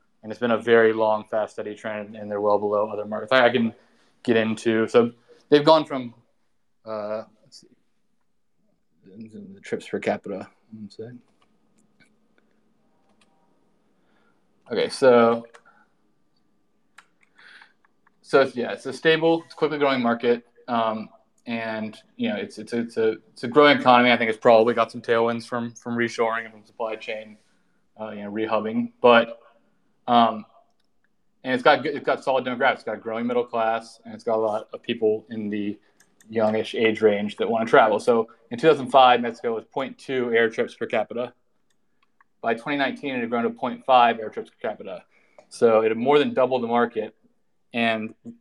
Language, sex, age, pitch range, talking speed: English, male, 20-39, 110-135 Hz, 165 wpm